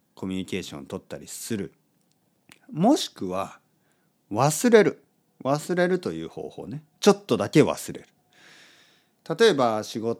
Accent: native